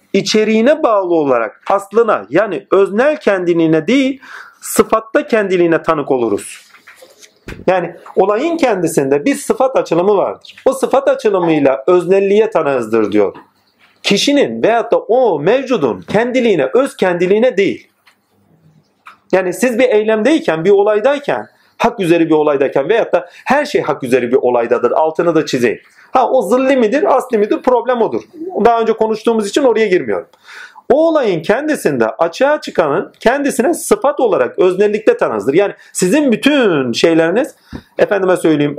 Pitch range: 185-290 Hz